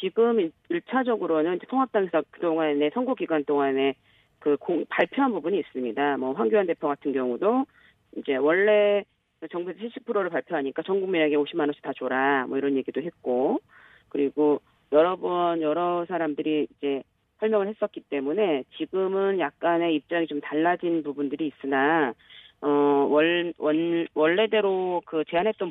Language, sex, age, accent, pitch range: Korean, female, 40-59, native, 140-185 Hz